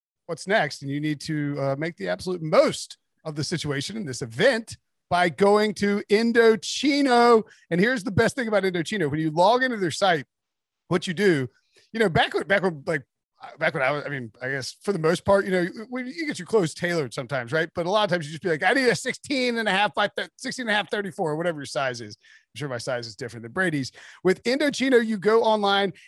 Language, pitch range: English, 160-225 Hz